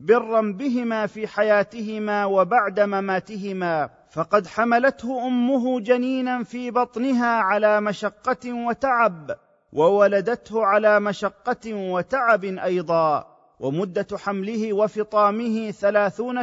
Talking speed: 90 wpm